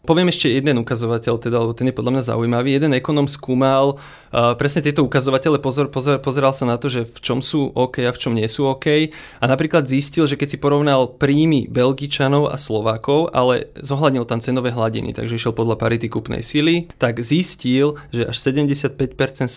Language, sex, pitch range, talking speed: Slovak, male, 120-145 Hz, 180 wpm